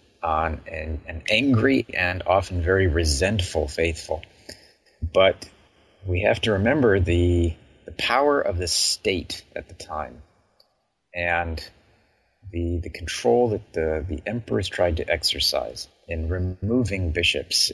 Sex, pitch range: male, 80-100 Hz